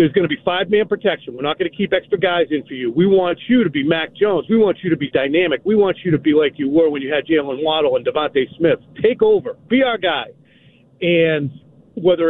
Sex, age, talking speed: male, 50-69, 260 wpm